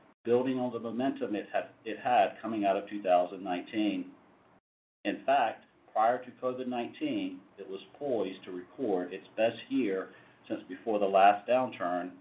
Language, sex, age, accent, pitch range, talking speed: English, male, 50-69, American, 100-130 Hz, 140 wpm